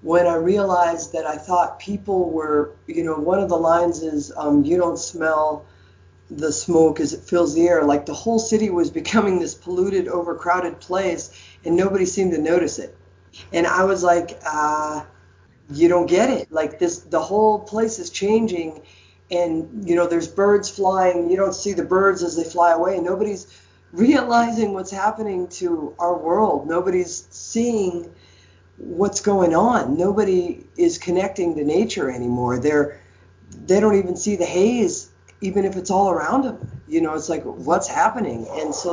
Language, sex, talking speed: English, female, 175 wpm